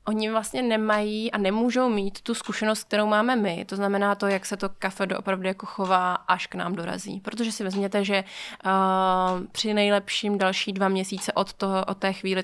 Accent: native